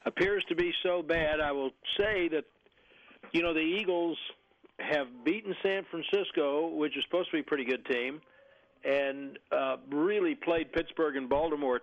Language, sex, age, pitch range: English, male, 60-79, 145-175 Hz